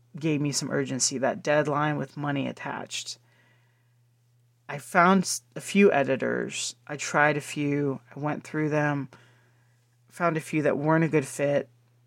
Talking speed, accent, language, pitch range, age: 150 wpm, American, English, 120-145 Hz, 30-49